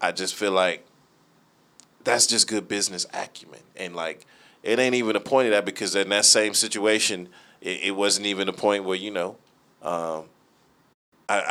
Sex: male